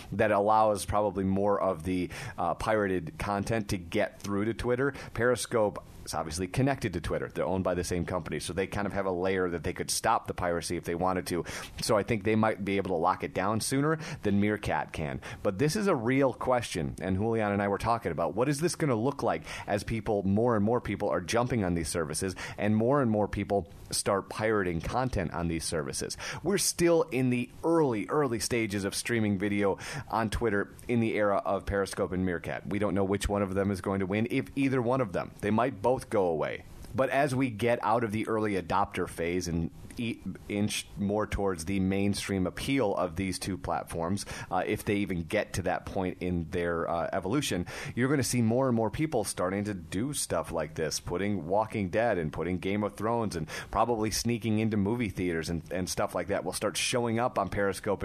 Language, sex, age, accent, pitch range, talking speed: English, male, 30-49, American, 90-115 Hz, 220 wpm